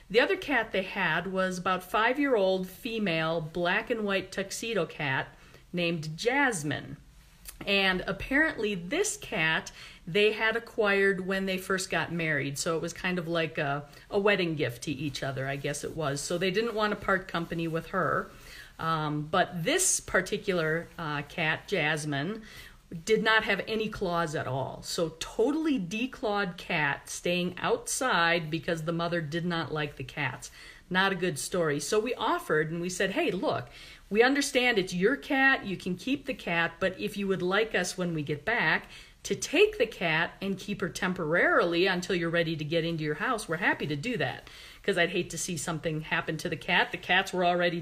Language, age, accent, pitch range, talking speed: English, 40-59, American, 165-205 Hz, 185 wpm